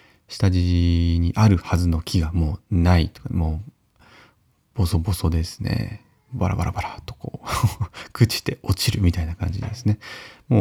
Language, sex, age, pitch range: Japanese, male, 30-49, 90-115 Hz